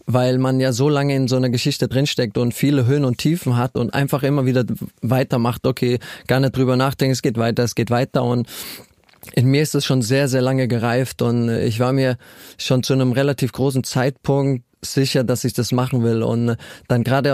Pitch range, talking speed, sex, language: 120-135 Hz, 210 wpm, male, German